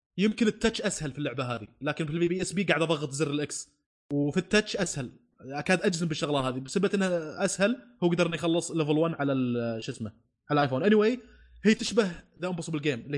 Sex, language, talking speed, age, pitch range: male, Arabic, 205 wpm, 20-39, 150-190 Hz